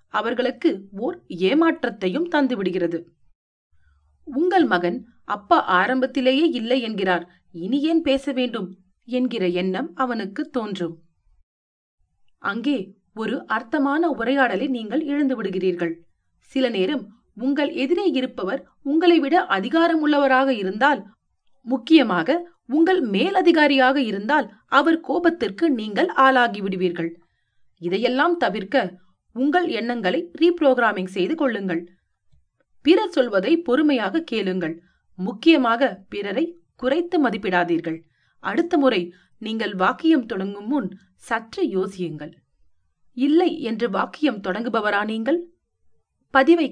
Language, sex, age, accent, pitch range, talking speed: Tamil, female, 30-49, native, 180-290 Hz, 90 wpm